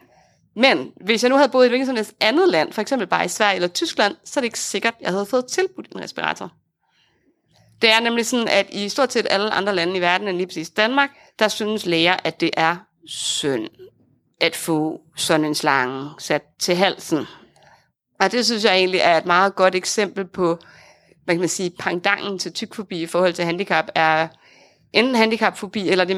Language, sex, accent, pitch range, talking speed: Danish, female, native, 170-230 Hz, 205 wpm